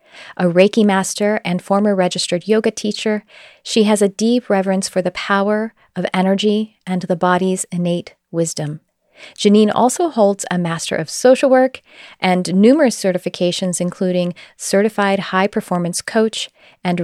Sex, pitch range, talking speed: female, 180-215 Hz, 135 wpm